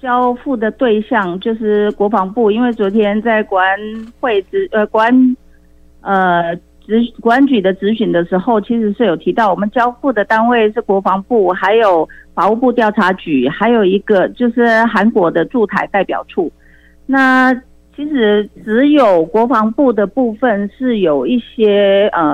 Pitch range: 190-245 Hz